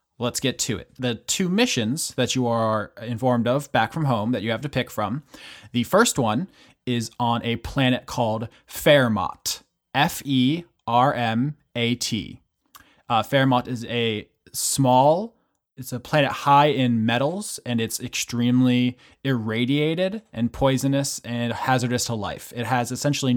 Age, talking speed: 20-39, 140 wpm